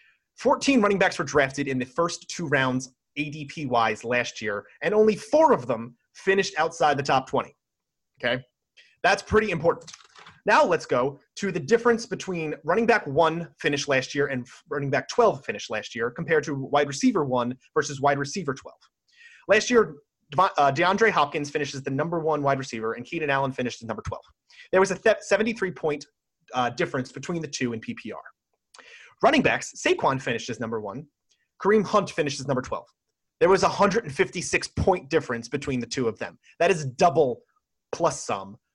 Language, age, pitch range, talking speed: English, 30-49, 135-190 Hz, 175 wpm